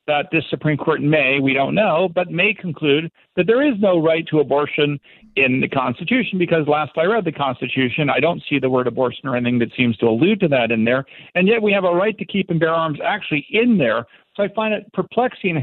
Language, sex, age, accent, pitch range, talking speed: English, male, 50-69, American, 135-180 Hz, 240 wpm